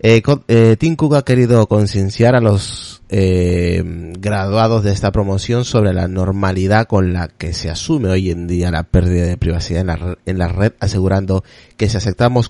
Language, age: Spanish, 30-49